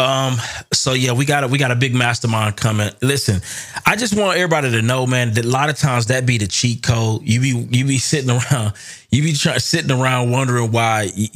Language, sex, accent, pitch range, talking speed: English, male, American, 105-130 Hz, 230 wpm